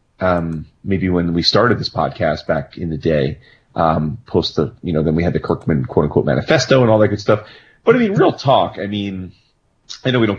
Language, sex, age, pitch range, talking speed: English, male, 30-49, 85-100 Hz, 230 wpm